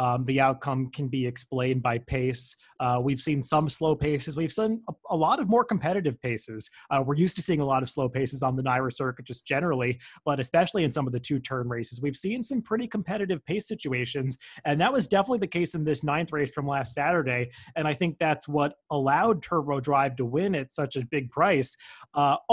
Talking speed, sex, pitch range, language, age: 225 wpm, male, 135-180 Hz, English, 30-49